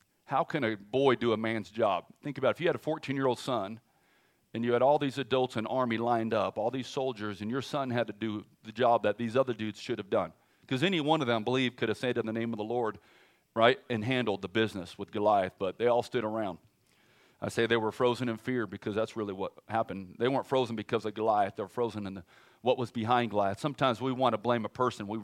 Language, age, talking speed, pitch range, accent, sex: English, 40-59, 255 wpm, 110-135 Hz, American, male